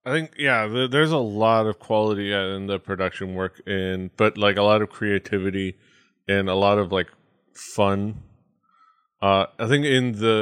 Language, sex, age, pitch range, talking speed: English, male, 20-39, 95-110 Hz, 175 wpm